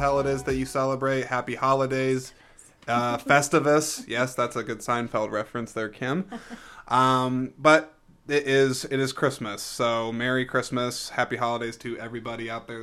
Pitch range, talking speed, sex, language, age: 110-135 Hz, 160 wpm, male, English, 20-39